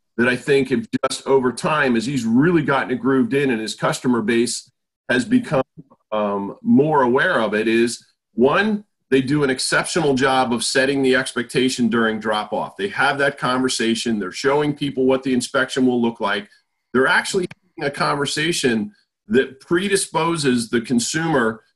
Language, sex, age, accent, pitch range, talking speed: English, male, 40-59, American, 125-150 Hz, 165 wpm